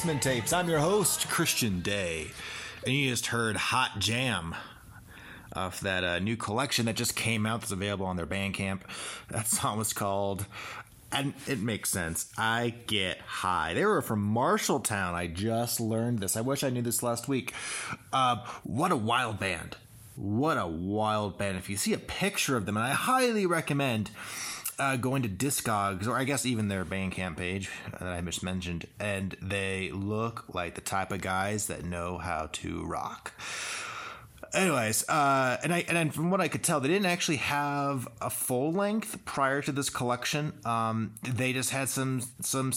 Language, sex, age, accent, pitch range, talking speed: English, male, 30-49, American, 100-135 Hz, 180 wpm